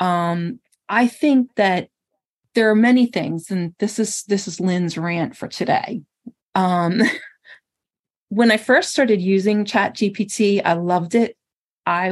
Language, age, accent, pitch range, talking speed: English, 40-59, American, 180-225 Hz, 145 wpm